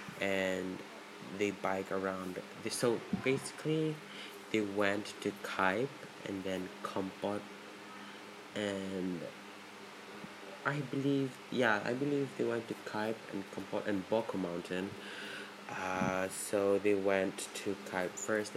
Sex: male